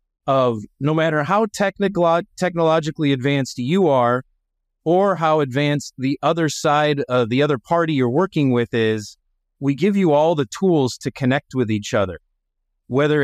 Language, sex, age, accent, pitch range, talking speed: English, male, 30-49, American, 120-150 Hz, 160 wpm